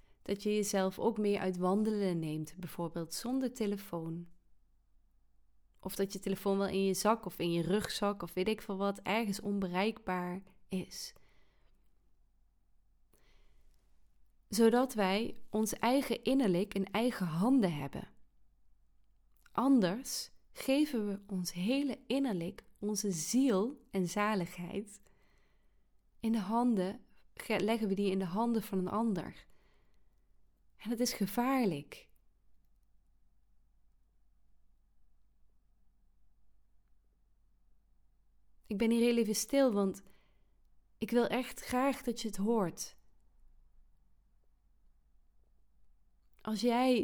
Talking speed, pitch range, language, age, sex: 105 wpm, 170-225 Hz, Dutch, 30-49, female